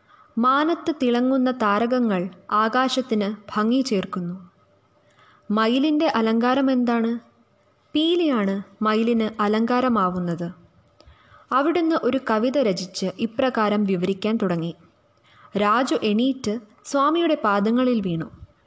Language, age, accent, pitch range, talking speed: Malayalam, 20-39, native, 205-270 Hz, 75 wpm